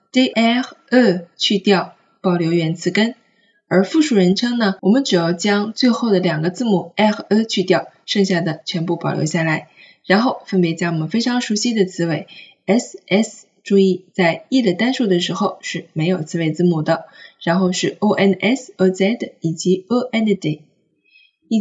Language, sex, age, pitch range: Chinese, female, 20-39, 175-235 Hz